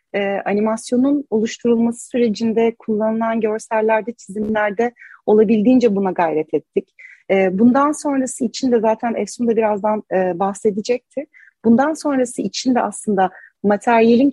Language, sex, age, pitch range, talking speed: Turkish, female, 30-49, 215-255 Hz, 115 wpm